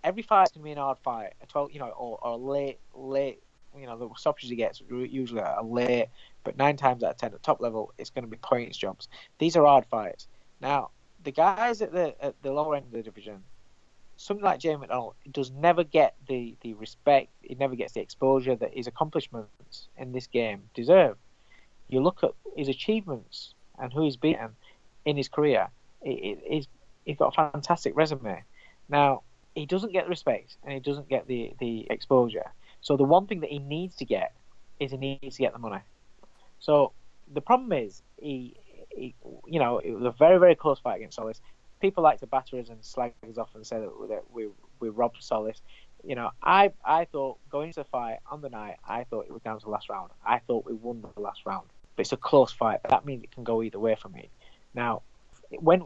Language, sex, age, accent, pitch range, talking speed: English, male, 20-39, British, 120-150 Hz, 225 wpm